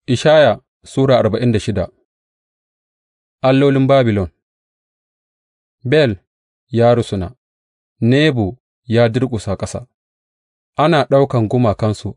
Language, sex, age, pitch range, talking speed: English, male, 30-49, 95-125 Hz, 80 wpm